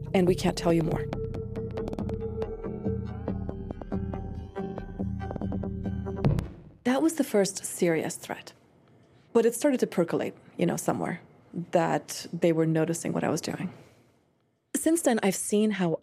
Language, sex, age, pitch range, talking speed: English, female, 30-49, 150-200 Hz, 125 wpm